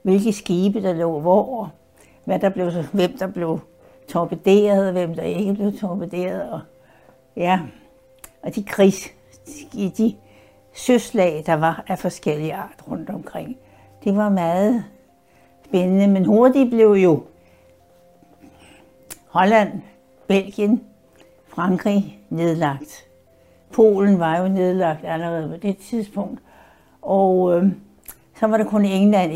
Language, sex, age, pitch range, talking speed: Danish, female, 60-79, 160-200 Hz, 120 wpm